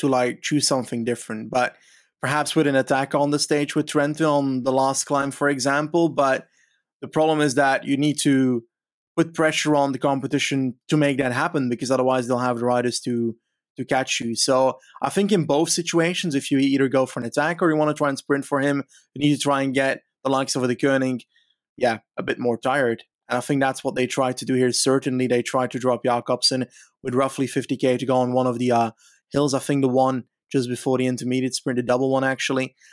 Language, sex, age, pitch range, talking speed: English, male, 20-39, 125-145 Hz, 230 wpm